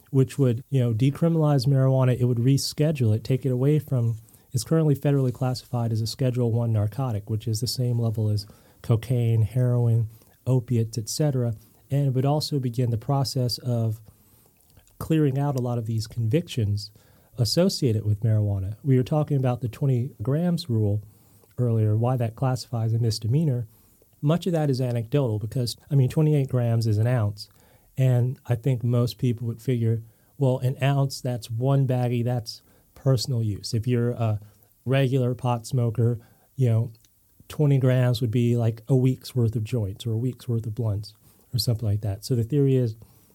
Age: 30-49